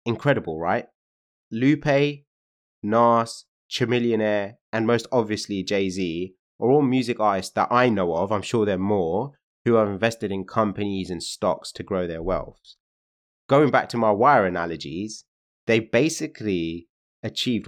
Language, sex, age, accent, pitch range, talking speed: English, male, 20-39, British, 90-125 Hz, 145 wpm